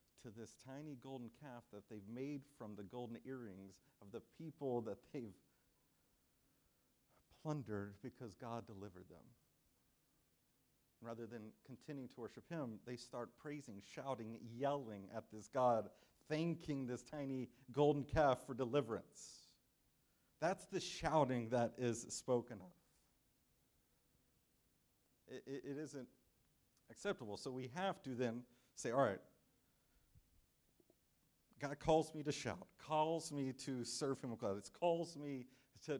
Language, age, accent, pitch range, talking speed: English, 40-59, American, 120-155 Hz, 130 wpm